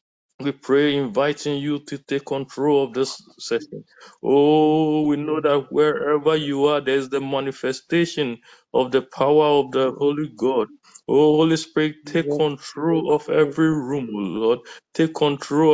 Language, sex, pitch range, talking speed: English, male, 140-165 Hz, 145 wpm